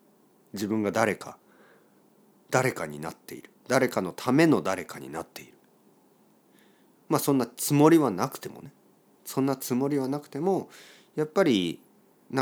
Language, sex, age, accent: Japanese, male, 40-59, native